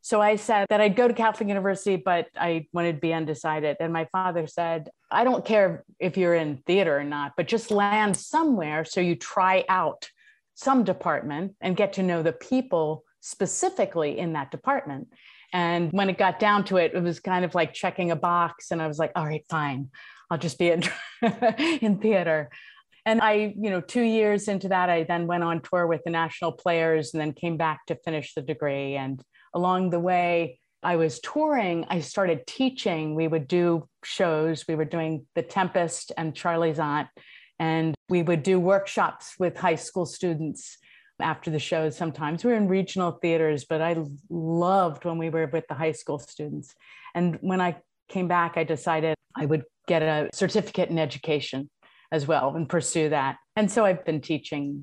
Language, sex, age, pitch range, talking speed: English, female, 30-49, 160-190 Hz, 195 wpm